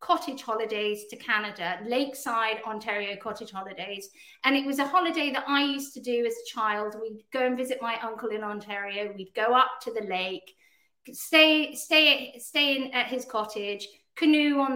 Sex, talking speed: female, 180 wpm